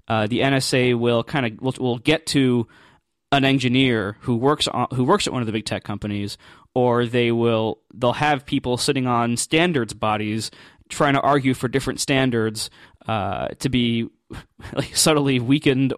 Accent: American